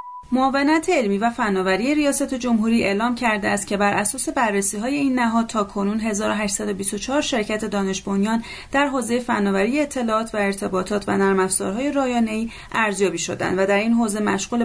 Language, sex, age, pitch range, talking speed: Persian, female, 30-49, 195-245 Hz, 155 wpm